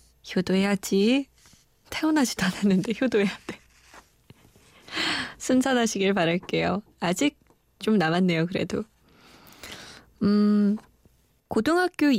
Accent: native